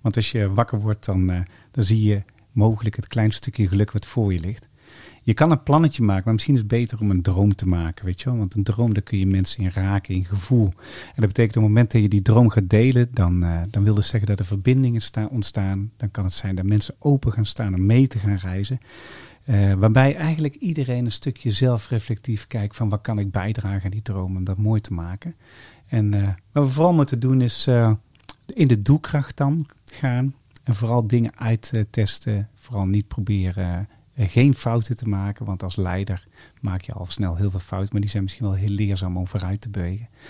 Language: Dutch